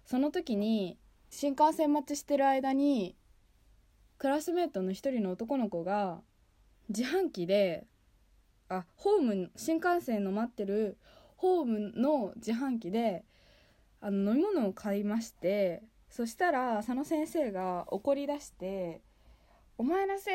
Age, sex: 20-39, female